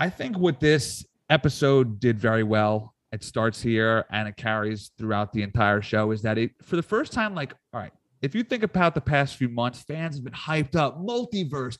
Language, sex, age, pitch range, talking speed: English, male, 30-49, 120-155 Hz, 215 wpm